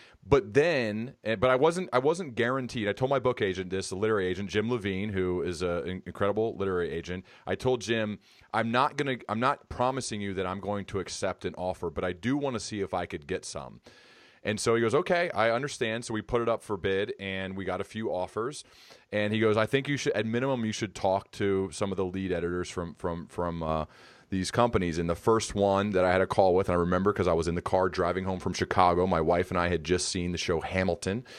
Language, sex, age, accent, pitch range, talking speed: English, male, 30-49, American, 90-105 Hz, 250 wpm